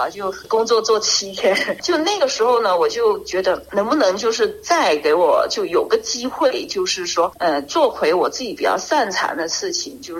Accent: native